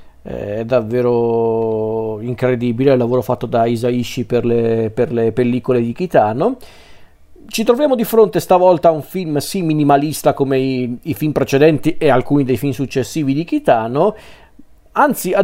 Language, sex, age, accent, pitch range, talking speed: Italian, male, 40-59, native, 125-150 Hz, 150 wpm